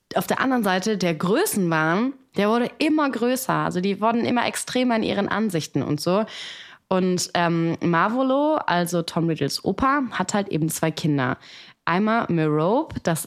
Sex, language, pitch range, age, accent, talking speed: female, German, 170-220 Hz, 20-39, German, 160 wpm